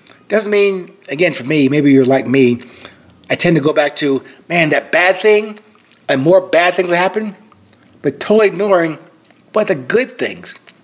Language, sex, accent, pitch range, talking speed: English, male, American, 140-185 Hz, 170 wpm